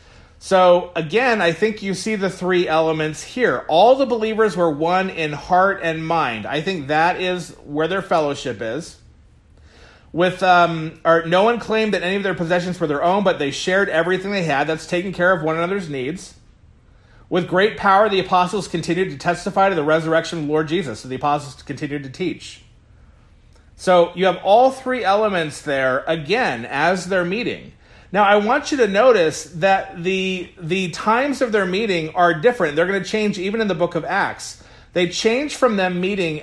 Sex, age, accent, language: male, 40-59, American, English